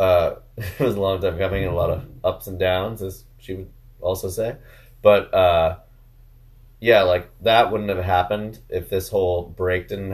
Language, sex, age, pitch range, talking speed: English, male, 30-49, 90-115 Hz, 190 wpm